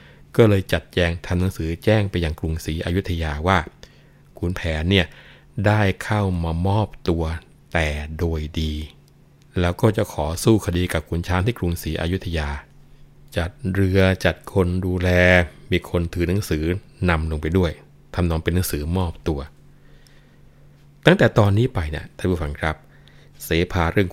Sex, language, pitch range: male, Thai, 80-100 Hz